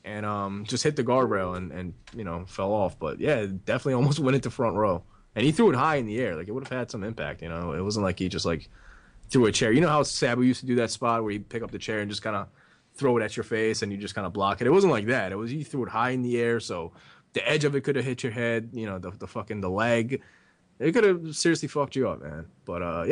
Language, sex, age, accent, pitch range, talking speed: English, male, 20-39, American, 100-125 Hz, 305 wpm